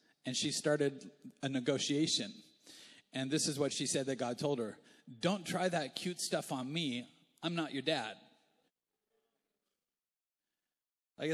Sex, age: male, 30-49